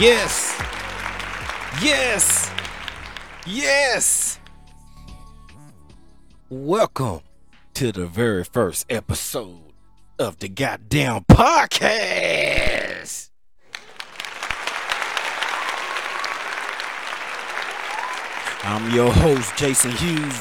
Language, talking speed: English, 55 wpm